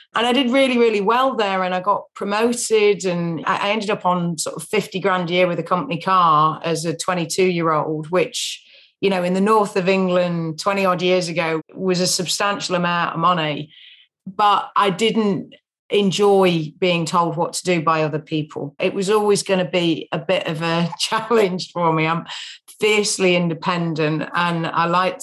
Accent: British